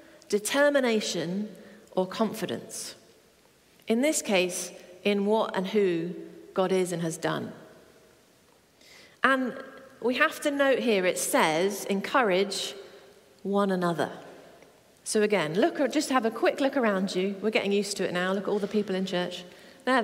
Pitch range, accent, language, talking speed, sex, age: 185-265 Hz, British, English, 155 wpm, female, 40-59